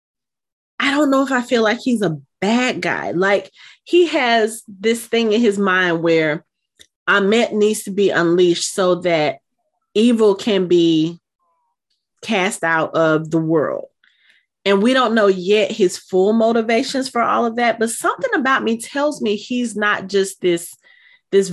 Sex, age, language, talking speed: female, 30-49, English, 160 wpm